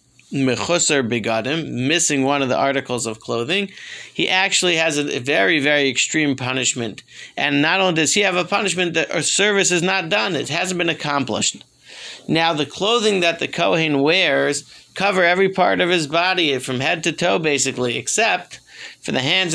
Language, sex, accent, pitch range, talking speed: English, male, American, 140-180 Hz, 165 wpm